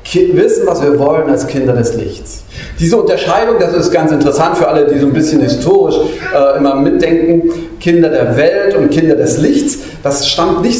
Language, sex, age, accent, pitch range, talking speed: German, male, 40-59, German, 145-215 Hz, 190 wpm